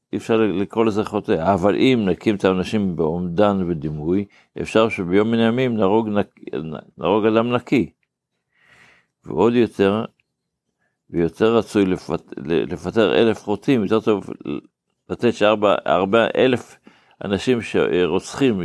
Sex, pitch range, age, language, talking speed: male, 95-115 Hz, 60-79, Hebrew, 110 wpm